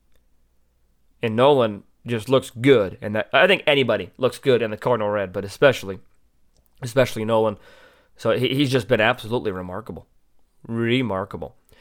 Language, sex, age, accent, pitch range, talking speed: English, male, 30-49, American, 105-130 Hz, 140 wpm